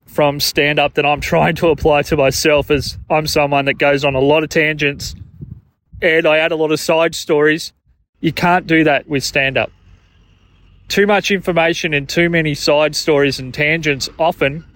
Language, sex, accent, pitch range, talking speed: English, male, Australian, 135-165 Hz, 180 wpm